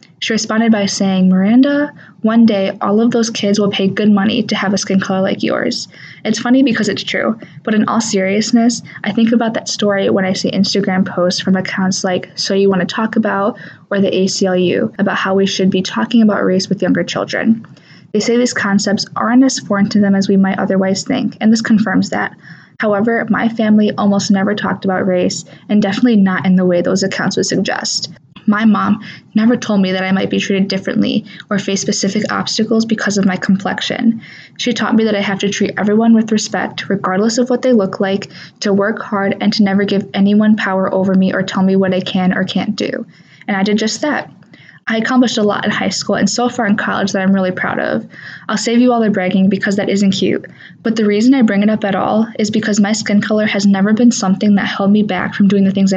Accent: American